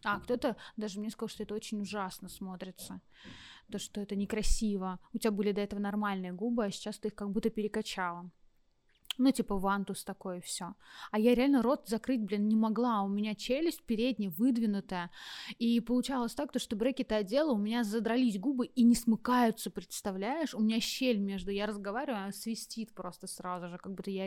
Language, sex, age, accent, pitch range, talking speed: Russian, female, 20-39, native, 205-250 Hz, 185 wpm